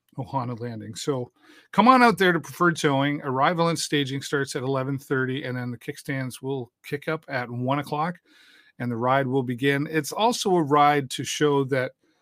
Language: English